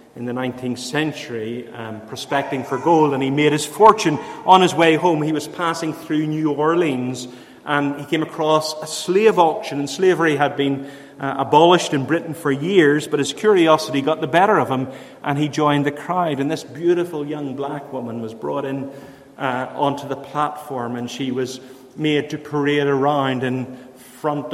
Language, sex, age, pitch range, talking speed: English, male, 30-49, 130-155 Hz, 180 wpm